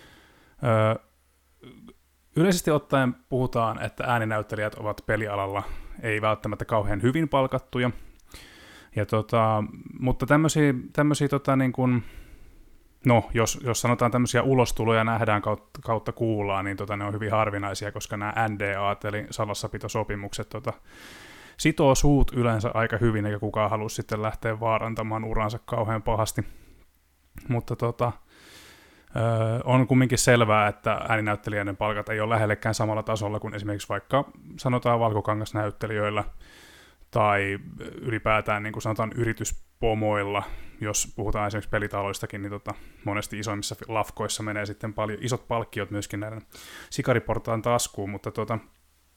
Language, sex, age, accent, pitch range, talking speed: Finnish, male, 20-39, native, 105-120 Hz, 125 wpm